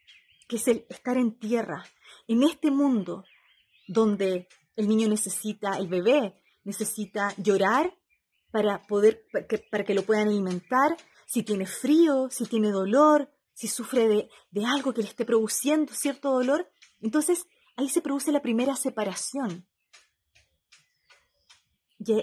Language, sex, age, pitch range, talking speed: Spanish, female, 30-49, 205-280 Hz, 140 wpm